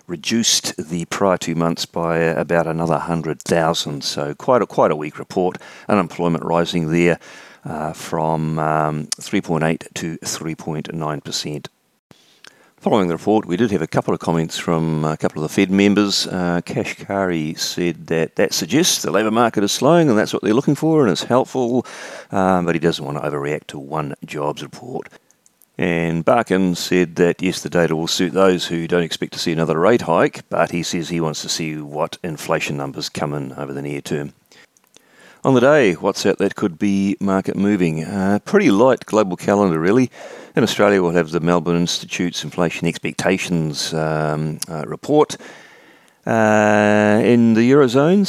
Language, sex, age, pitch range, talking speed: English, male, 40-59, 80-100 Hz, 175 wpm